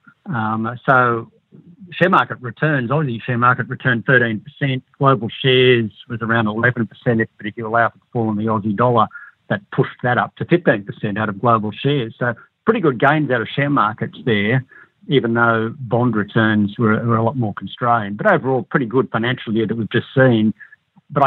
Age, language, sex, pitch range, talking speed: 60-79, English, male, 115-130 Hz, 195 wpm